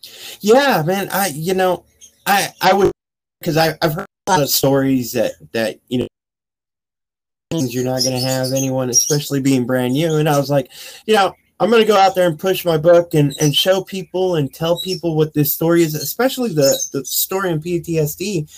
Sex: male